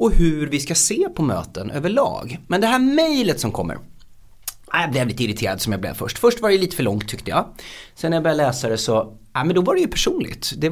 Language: Swedish